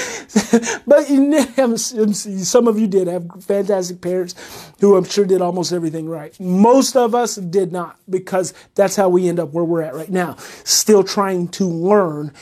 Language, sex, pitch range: English, male, 180-270 Hz